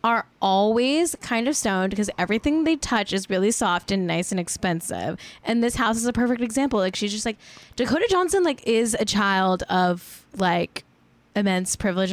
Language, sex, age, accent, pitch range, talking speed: English, female, 10-29, American, 190-260 Hz, 185 wpm